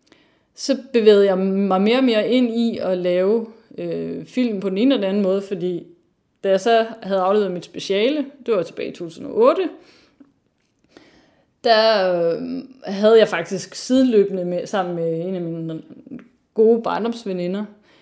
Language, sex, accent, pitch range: Danish, female, native, 180-235 Hz